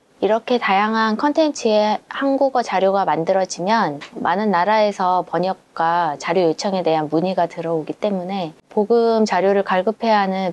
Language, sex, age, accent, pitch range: Korean, female, 20-39, native, 165-215 Hz